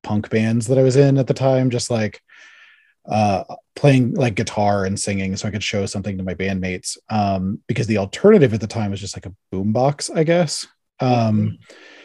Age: 30-49